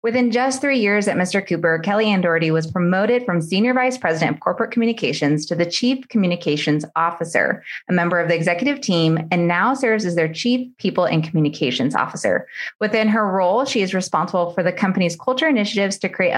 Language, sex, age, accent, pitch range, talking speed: English, female, 20-39, American, 160-215 Hz, 190 wpm